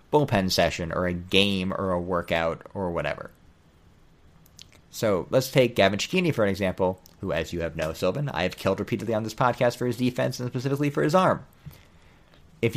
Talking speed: 190 wpm